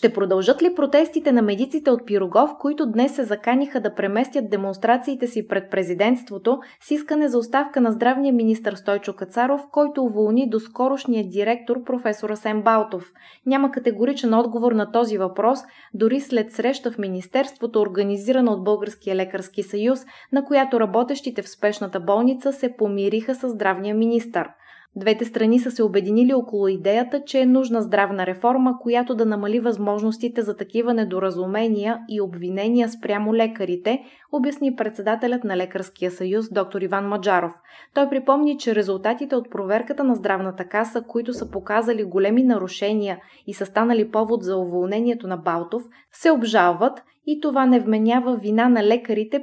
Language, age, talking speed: Bulgarian, 20-39, 150 wpm